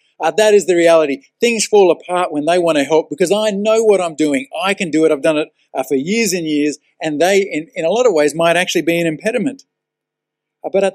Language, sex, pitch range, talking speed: English, male, 150-185 Hz, 260 wpm